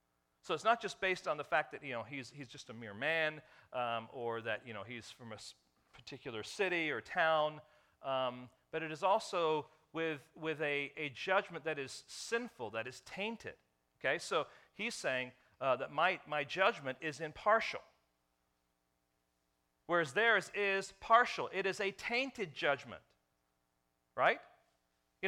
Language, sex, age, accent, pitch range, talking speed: English, male, 40-59, American, 125-175 Hz, 160 wpm